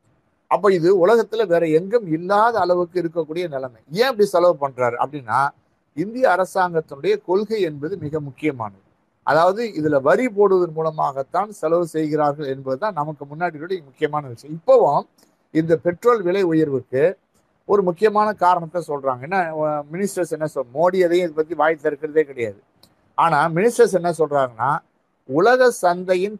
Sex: male